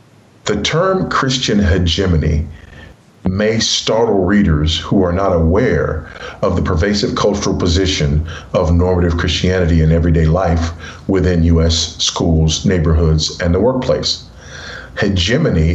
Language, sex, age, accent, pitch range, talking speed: English, male, 40-59, American, 80-100 Hz, 115 wpm